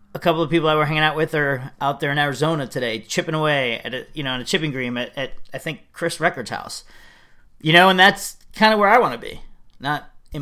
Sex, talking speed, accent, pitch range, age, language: male, 260 wpm, American, 130-165 Hz, 40-59, English